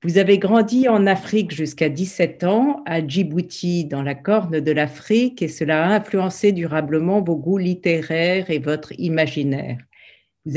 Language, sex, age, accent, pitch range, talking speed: French, female, 50-69, French, 155-190 Hz, 155 wpm